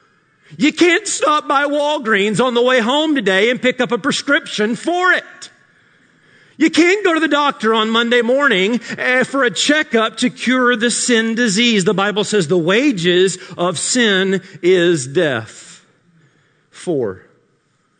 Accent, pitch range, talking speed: American, 135-225 Hz, 145 wpm